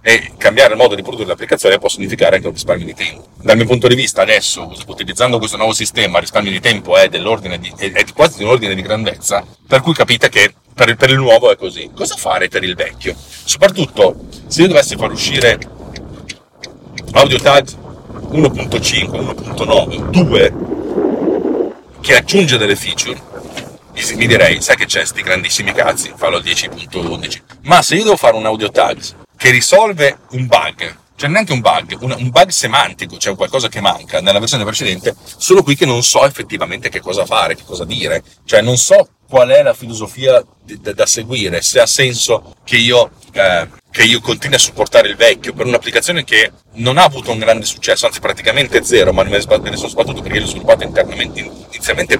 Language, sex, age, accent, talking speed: Italian, male, 50-69, native, 180 wpm